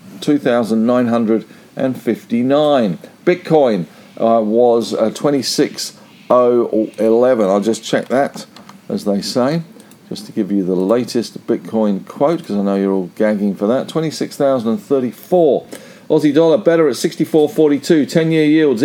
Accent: British